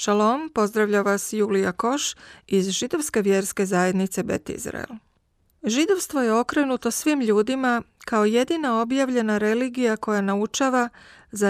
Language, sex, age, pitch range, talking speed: Croatian, female, 40-59, 195-250 Hz, 120 wpm